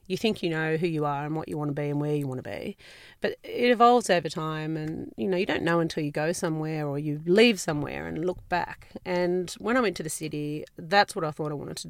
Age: 30-49